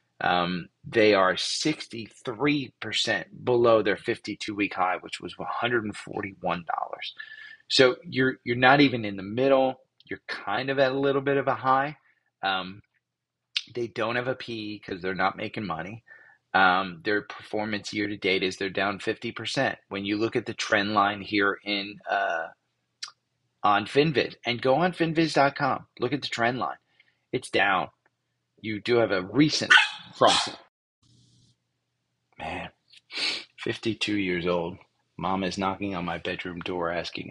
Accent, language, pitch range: American, English, 100-130 Hz